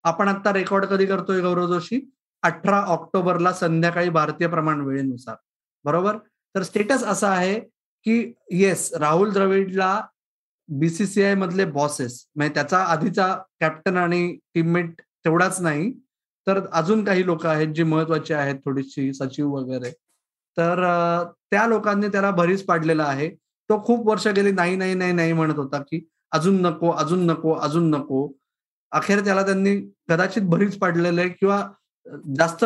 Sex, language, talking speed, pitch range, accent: male, Marathi, 110 wpm, 165-200 Hz, native